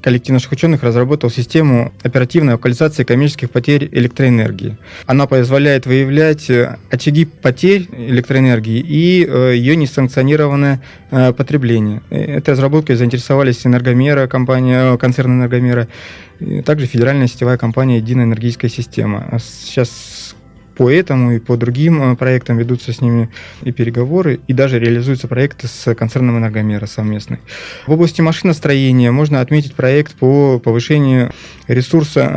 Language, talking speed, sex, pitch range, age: Russian, 115 wpm, male, 120-145 Hz, 20-39